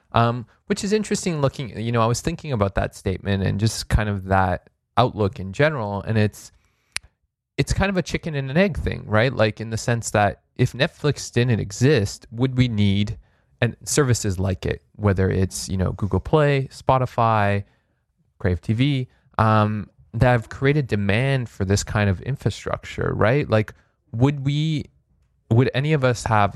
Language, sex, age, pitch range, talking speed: English, male, 20-39, 100-125 Hz, 175 wpm